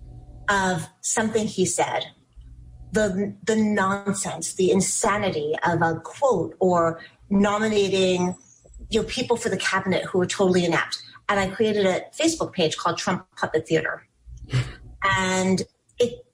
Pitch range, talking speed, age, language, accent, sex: 170-215 Hz, 130 wpm, 30-49, English, American, female